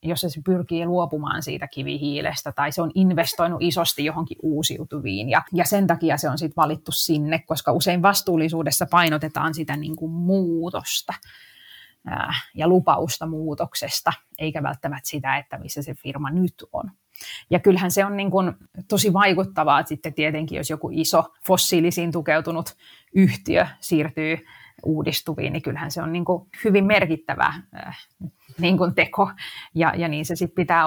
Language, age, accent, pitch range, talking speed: Finnish, 30-49, native, 155-185 Hz, 140 wpm